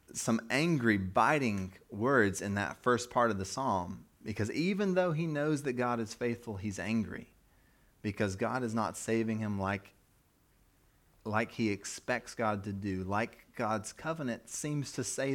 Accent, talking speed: American, 160 wpm